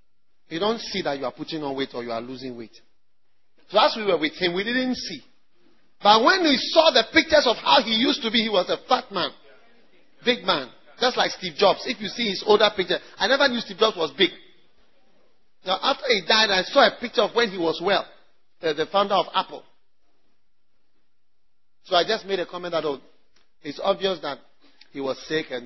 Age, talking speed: 40-59, 210 wpm